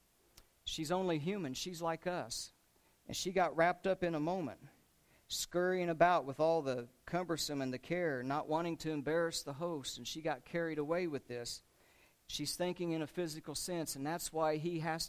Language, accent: English, American